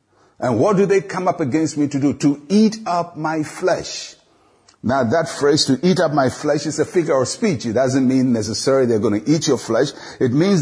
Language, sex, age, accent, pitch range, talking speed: English, male, 60-79, Nigerian, 125-175 Hz, 225 wpm